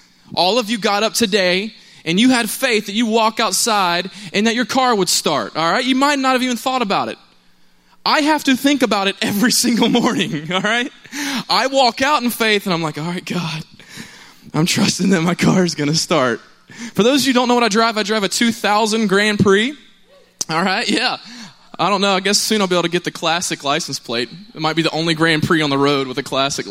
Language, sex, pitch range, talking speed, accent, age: English, male, 185-250 Hz, 245 wpm, American, 20-39